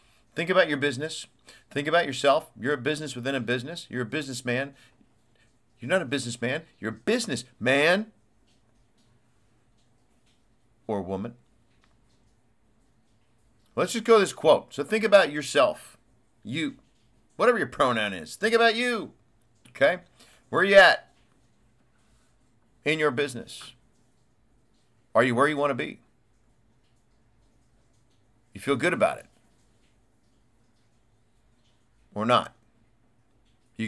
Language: English